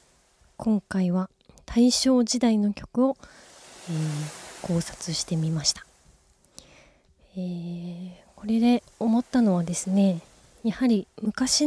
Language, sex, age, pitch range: Japanese, female, 20-39, 175-220 Hz